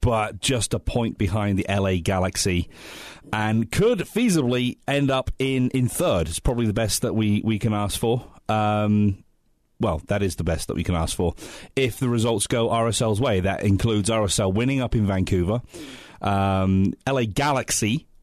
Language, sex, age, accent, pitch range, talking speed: English, male, 30-49, British, 95-115 Hz, 175 wpm